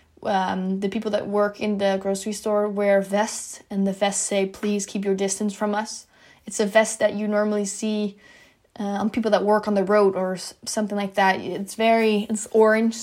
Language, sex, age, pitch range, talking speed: English, female, 10-29, 200-220 Hz, 205 wpm